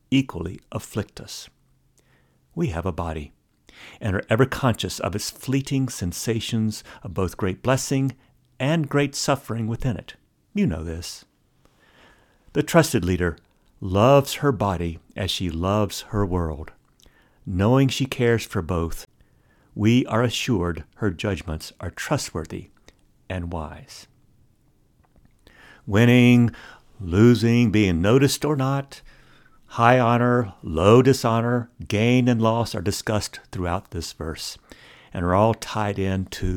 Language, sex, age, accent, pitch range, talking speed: English, male, 60-79, American, 95-125 Hz, 125 wpm